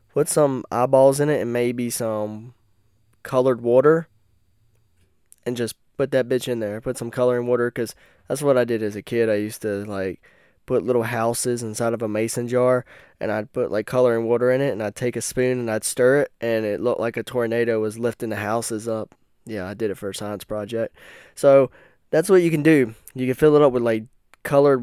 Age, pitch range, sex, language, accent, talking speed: 10-29, 105-130 Hz, male, English, American, 220 wpm